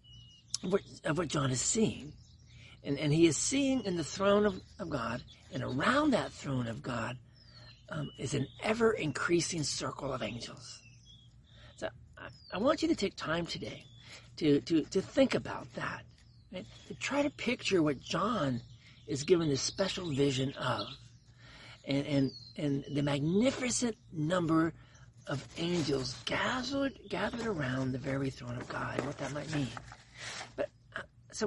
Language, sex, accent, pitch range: English, male, American, 125-180 Hz